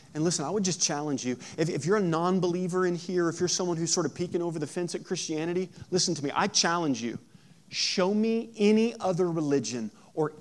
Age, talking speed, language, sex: 30-49, 220 wpm, English, male